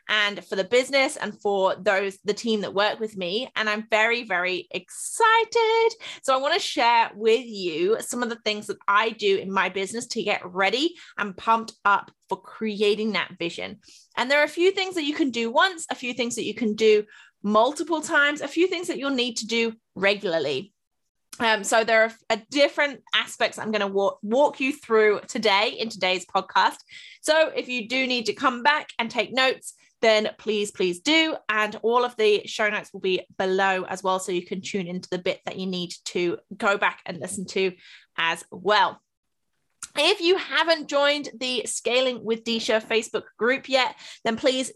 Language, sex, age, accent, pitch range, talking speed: English, female, 20-39, British, 200-260 Hz, 195 wpm